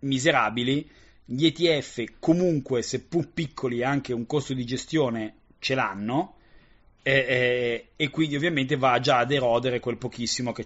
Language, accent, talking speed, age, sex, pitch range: Italian, native, 140 wpm, 30-49, male, 120-150 Hz